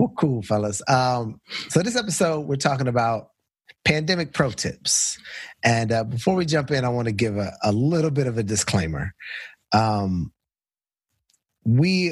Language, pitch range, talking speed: English, 100-125 Hz, 160 wpm